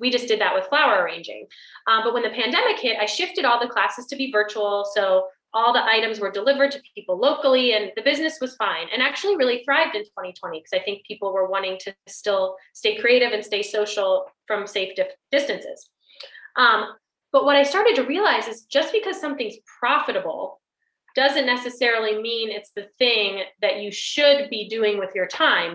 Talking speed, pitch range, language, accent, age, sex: 195 wpm, 205-280 Hz, English, American, 20-39, female